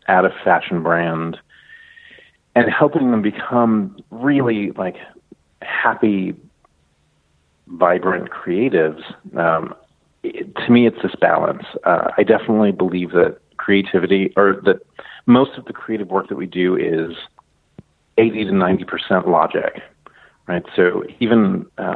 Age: 40-59